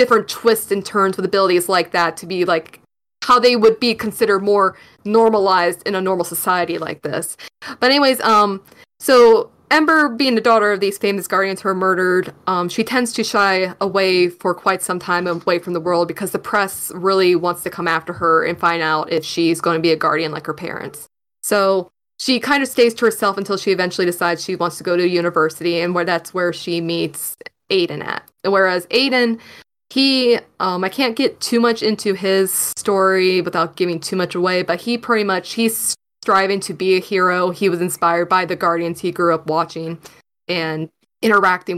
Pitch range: 175-205 Hz